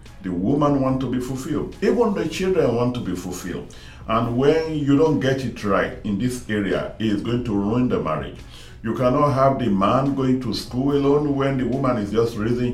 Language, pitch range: English, 105-140 Hz